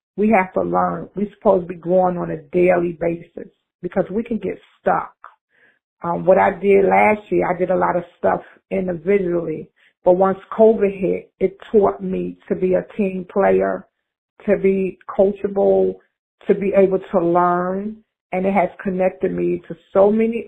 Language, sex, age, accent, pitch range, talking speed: English, female, 40-59, American, 175-195 Hz, 175 wpm